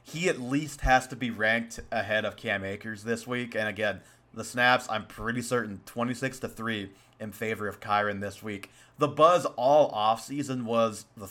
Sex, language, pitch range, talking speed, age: male, English, 110-135 Hz, 185 wpm, 30-49